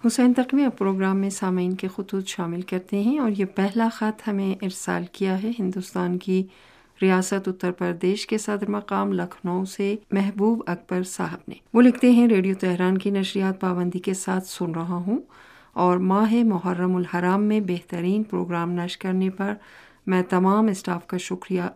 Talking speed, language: 170 wpm, Urdu